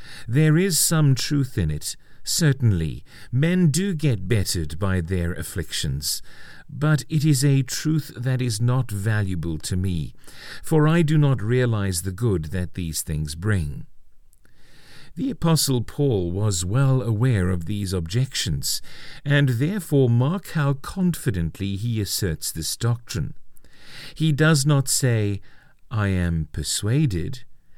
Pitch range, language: 95-140 Hz, English